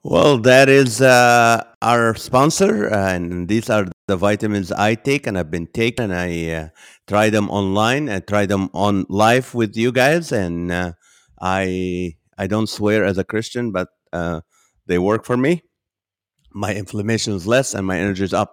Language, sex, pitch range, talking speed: English, male, 105-150 Hz, 180 wpm